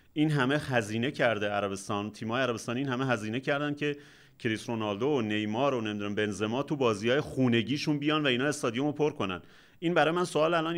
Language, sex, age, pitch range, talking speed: Persian, male, 30-49, 110-150 Hz, 195 wpm